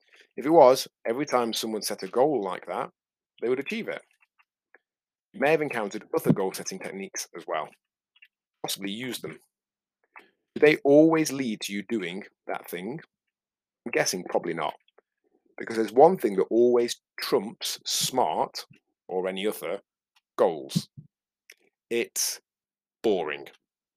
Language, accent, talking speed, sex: English, British, 135 wpm, male